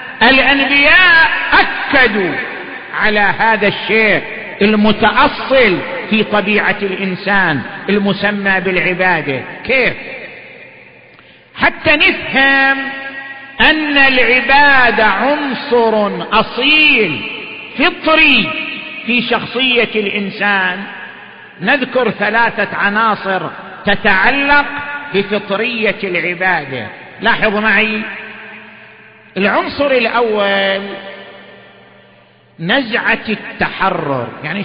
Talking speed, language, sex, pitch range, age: 60 wpm, Arabic, male, 195-260 Hz, 50-69